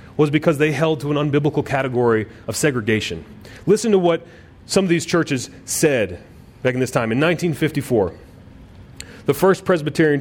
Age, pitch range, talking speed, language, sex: 30-49, 120-160 Hz, 160 wpm, English, male